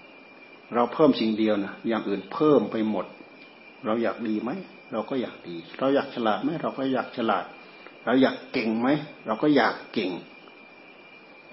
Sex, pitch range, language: male, 105-135 Hz, Thai